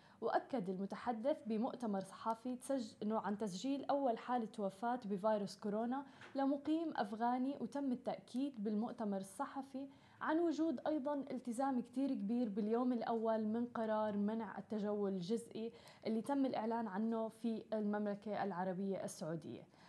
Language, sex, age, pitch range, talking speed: Arabic, female, 20-39, 215-265 Hz, 115 wpm